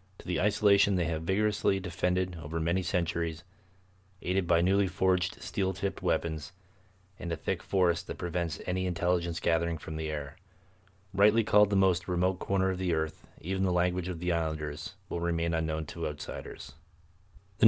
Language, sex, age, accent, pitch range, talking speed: English, male, 30-49, American, 90-100 Hz, 165 wpm